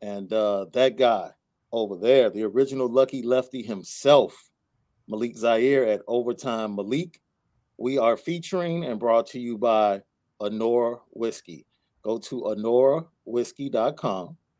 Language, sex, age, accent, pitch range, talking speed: English, male, 40-59, American, 115-140 Hz, 120 wpm